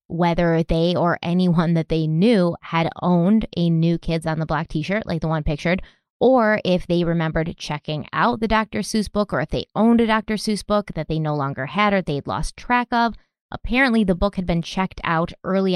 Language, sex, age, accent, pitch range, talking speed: English, female, 20-39, American, 160-195 Hz, 215 wpm